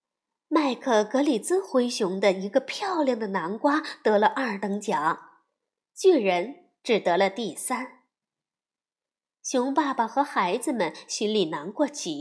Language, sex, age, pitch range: Chinese, female, 20-39, 225-330 Hz